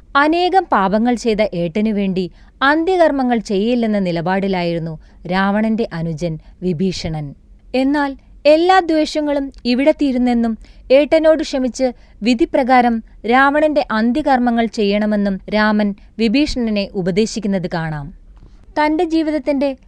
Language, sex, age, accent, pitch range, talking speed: Malayalam, female, 20-39, native, 195-275 Hz, 80 wpm